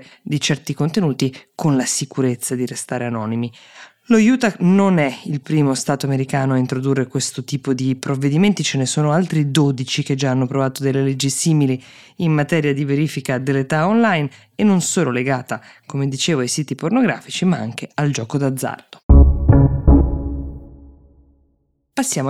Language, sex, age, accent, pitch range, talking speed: Italian, female, 20-39, native, 130-155 Hz, 150 wpm